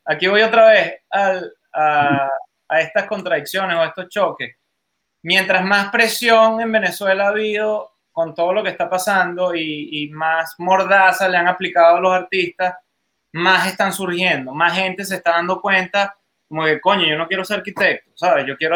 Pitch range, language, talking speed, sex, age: 165-200 Hz, Spanish, 180 wpm, male, 20-39